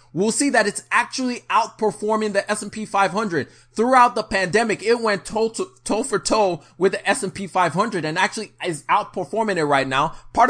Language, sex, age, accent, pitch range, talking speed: English, male, 20-39, American, 145-205 Hz, 175 wpm